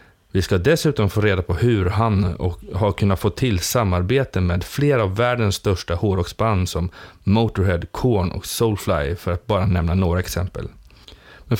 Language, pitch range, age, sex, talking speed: Swedish, 95-125 Hz, 30-49, male, 160 wpm